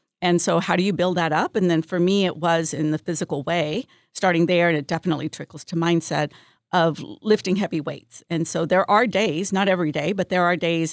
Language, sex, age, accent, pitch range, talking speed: English, female, 50-69, American, 160-190 Hz, 230 wpm